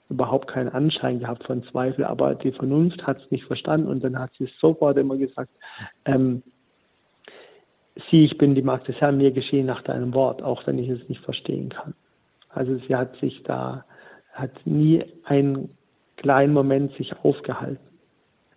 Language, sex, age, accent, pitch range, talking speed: German, male, 50-69, German, 130-145 Hz, 170 wpm